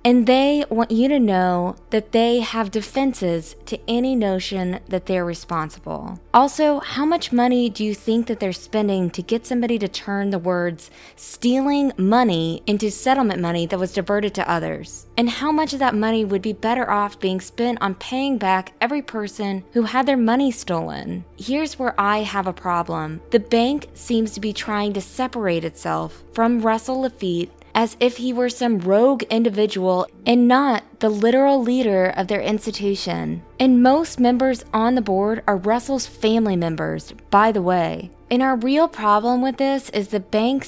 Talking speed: 175 wpm